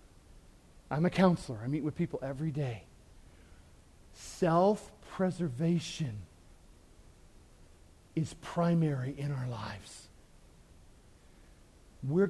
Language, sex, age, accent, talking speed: English, male, 40-59, American, 80 wpm